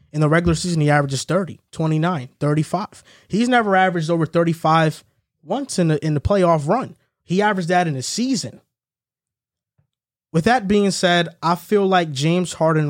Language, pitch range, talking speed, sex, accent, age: English, 150-190 Hz, 165 wpm, male, American, 20-39